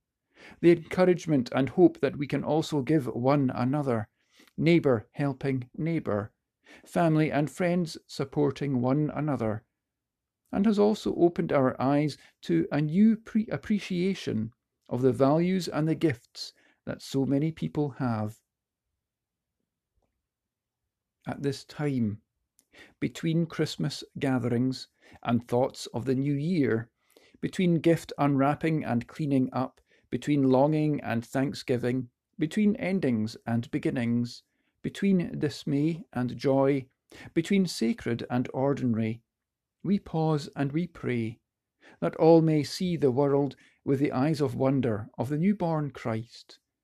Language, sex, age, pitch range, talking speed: English, male, 50-69, 125-160 Hz, 120 wpm